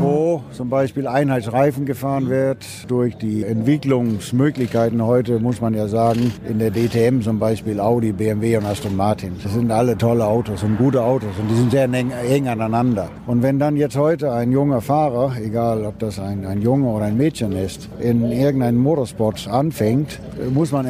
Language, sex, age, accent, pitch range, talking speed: German, male, 60-79, German, 115-135 Hz, 180 wpm